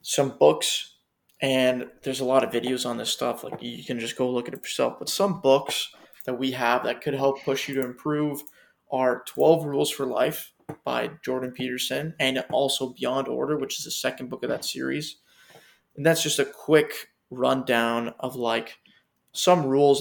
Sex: male